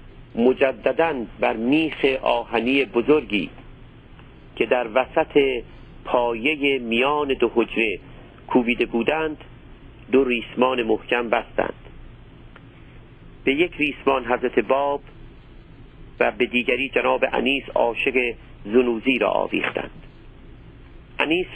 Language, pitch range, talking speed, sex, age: Persian, 120-140 Hz, 90 wpm, male, 50-69